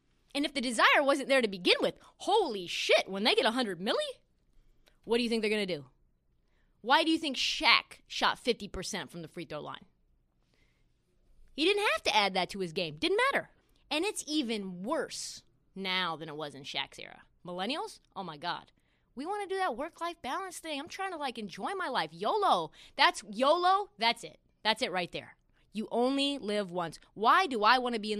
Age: 20-39